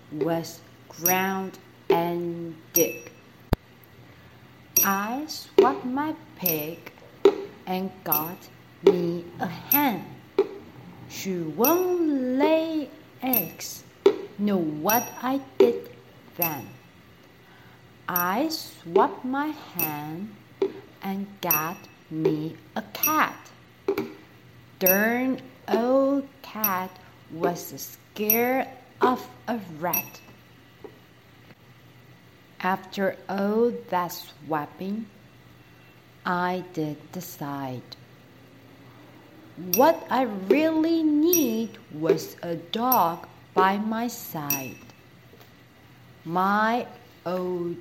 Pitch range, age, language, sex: 160-250 Hz, 40-59, Chinese, female